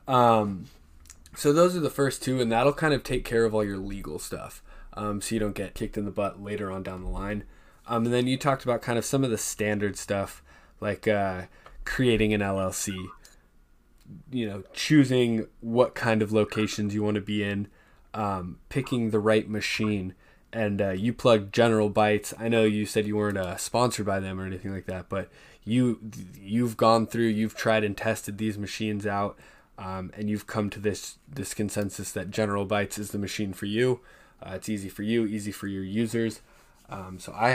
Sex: male